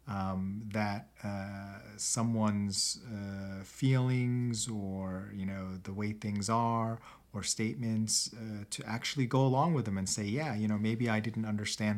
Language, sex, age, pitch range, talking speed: English, male, 30-49, 95-115 Hz, 155 wpm